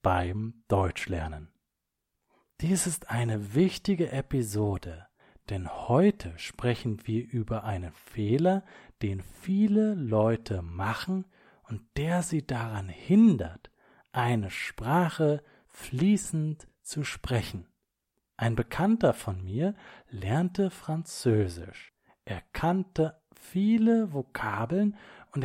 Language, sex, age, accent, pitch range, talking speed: English, male, 40-59, German, 100-170 Hz, 90 wpm